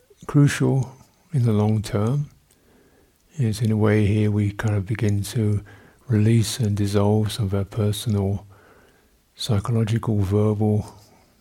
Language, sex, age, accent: English, male, 60-79, British